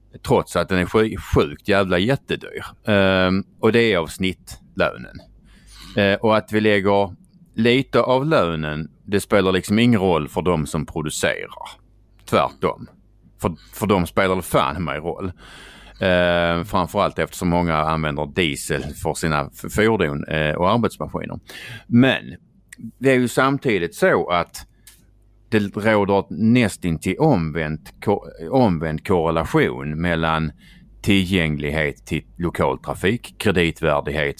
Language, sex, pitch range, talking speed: Swedish, male, 85-110 Hz, 120 wpm